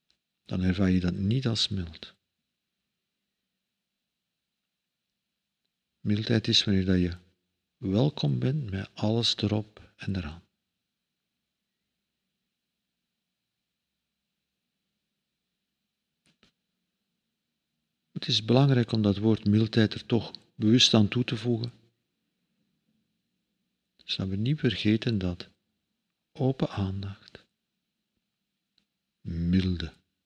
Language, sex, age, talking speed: Dutch, male, 50-69, 80 wpm